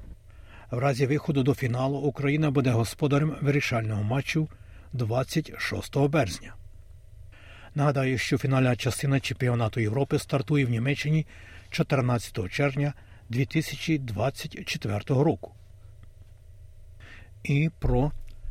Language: Ukrainian